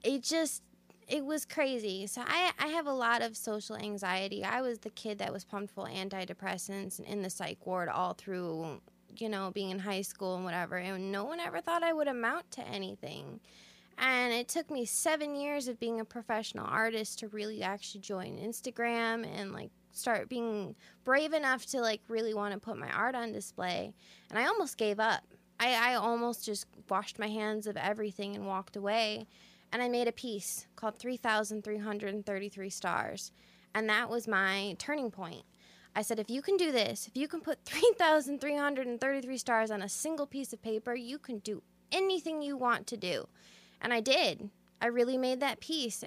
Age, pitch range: 20-39, 200-245 Hz